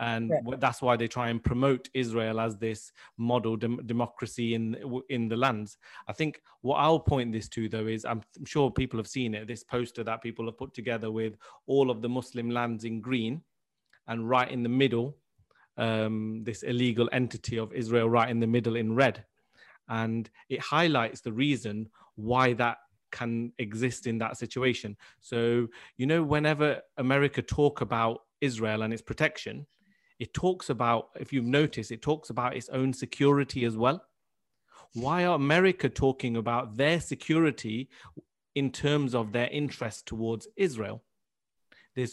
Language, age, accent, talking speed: English, 30-49, British, 165 wpm